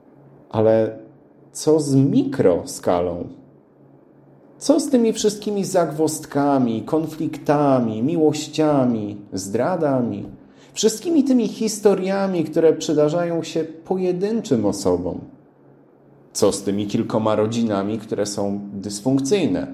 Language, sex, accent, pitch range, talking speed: Polish, male, native, 110-160 Hz, 85 wpm